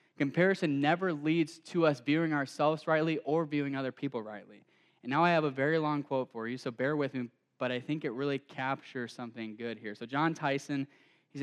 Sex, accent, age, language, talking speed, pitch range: male, American, 10-29, English, 210 wpm, 135-170 Hz